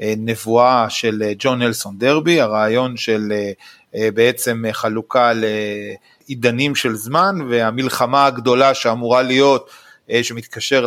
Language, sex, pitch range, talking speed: Hebrew, male, 115-145 Hz, 95 wpm